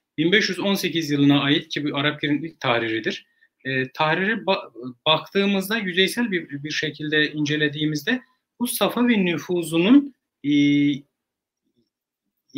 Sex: male